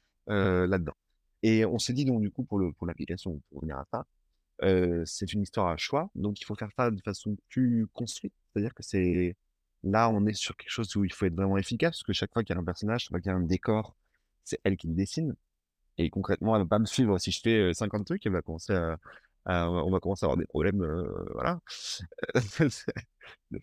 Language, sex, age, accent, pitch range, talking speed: French, male, 30-49, French, 85-110 Hz, 245 wpm